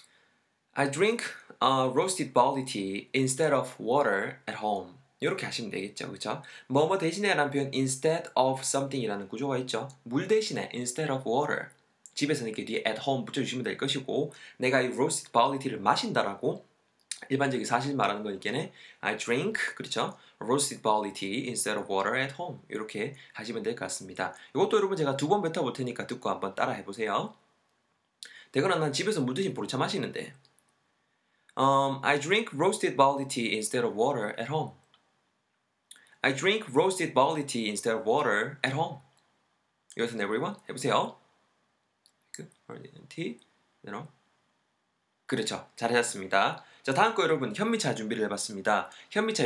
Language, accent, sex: Korean, native, male